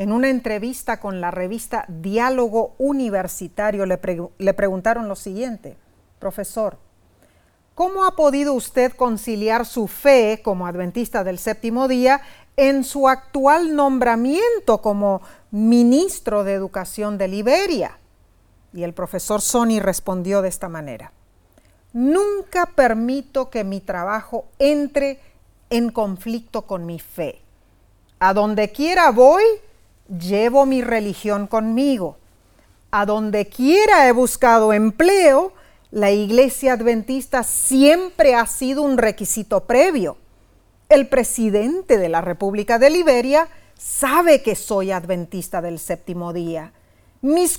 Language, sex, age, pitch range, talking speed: Spanish, female, 40-59, 195-275 Hz, 120 wpm